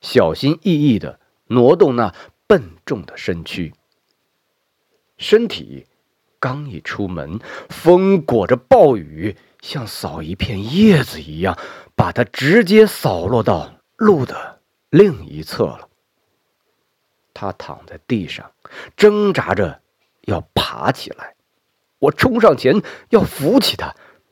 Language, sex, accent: Chinese, male, native